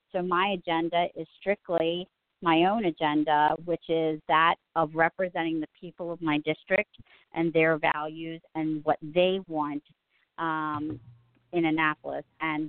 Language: English